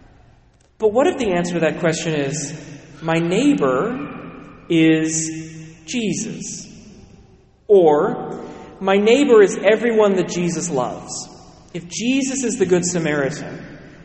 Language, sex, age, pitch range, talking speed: English, male, 30-49, 160-210 Hz, 115 wpm